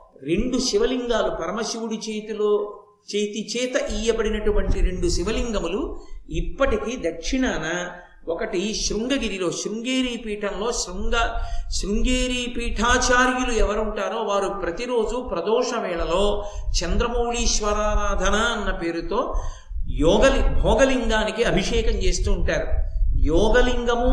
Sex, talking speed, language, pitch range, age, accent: male, 75 wpm, Telugu, 200-240 Hz, 50-69, native